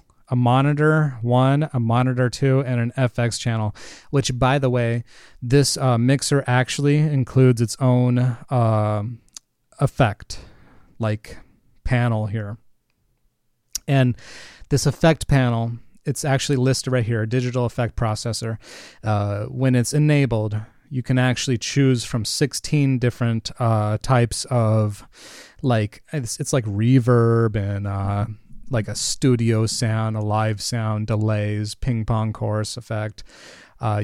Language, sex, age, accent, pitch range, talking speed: English, male, 30-49, American, 110-130 Hz, 125 wpm